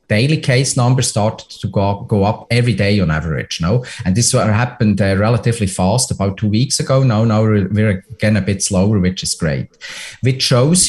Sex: male